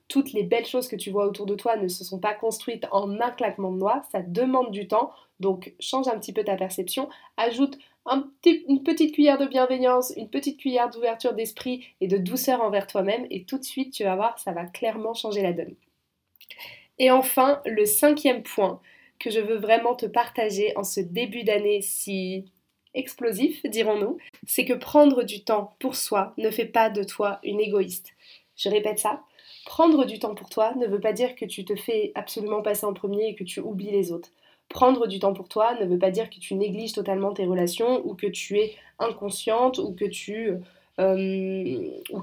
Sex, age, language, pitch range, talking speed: female, 20-39, French, 200-250 Hz, 200 wpm